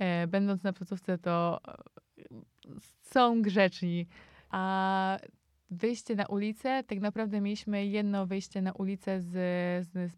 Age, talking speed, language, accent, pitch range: 20-39, 120 wpm, Polish, native, 185-205 Hz